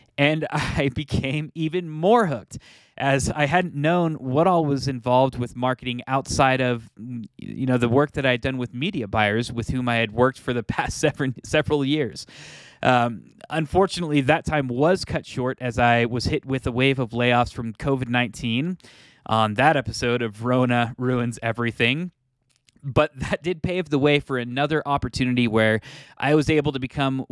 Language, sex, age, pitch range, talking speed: English, male, 20-39, 120-145 Hz, 175 wpm